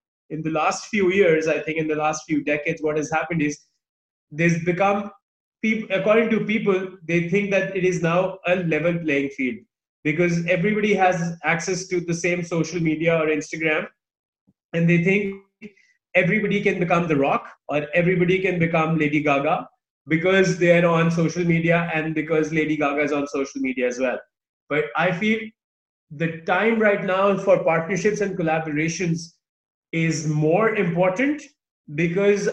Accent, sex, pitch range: Indian, male, 160-195 Hz